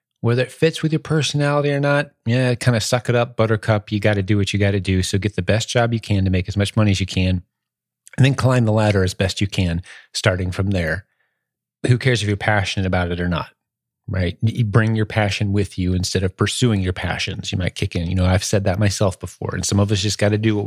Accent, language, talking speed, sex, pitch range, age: American, English, 265 wpm, male, 100-125 Hz, 30-49